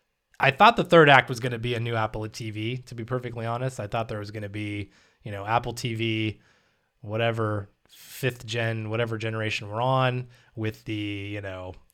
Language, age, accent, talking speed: English, 20-39, American, 195 wpm